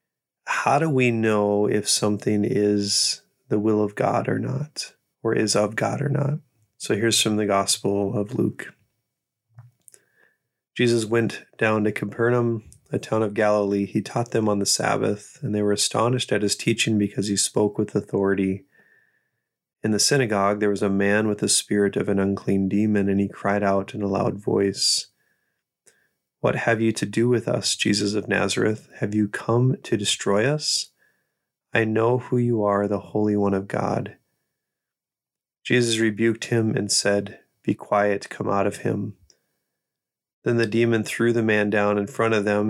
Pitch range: 100-115 Hz